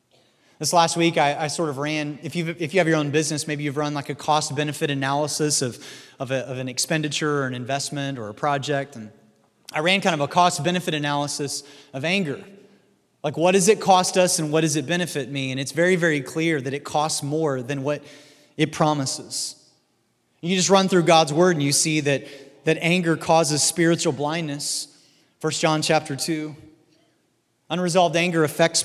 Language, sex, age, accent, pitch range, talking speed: English, male, 30-49, American, 145-170 Hz, 190 wpm